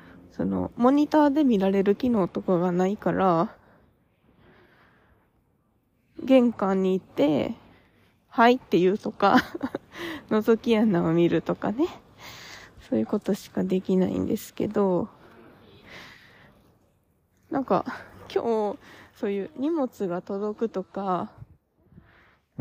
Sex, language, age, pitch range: female, Japanese, 20-39, 185-255 Hz